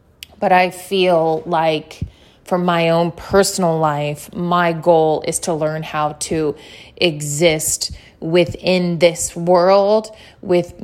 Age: 30-49